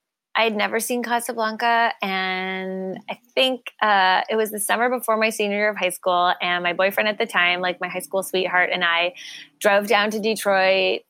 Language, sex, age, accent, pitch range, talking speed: English, female, 20-39, American, 190-240 Hz, 200 wpm